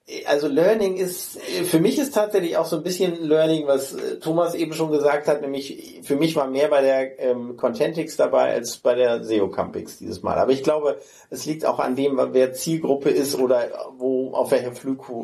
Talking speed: 195 wpm